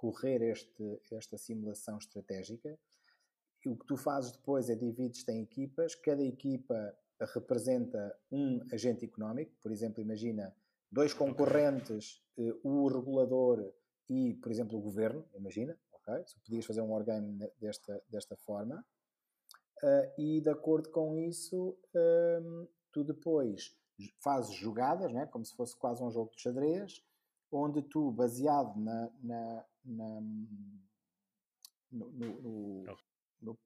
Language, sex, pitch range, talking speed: Portuguese, male, 115-165 Hz, 125 wpm